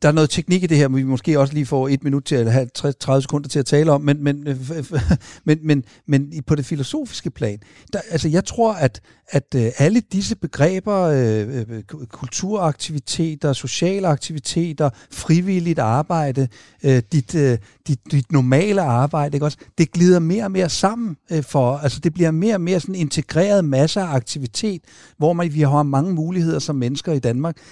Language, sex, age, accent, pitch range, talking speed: Danish, male, 60-79, native, 135-170 Hz, 170 wpm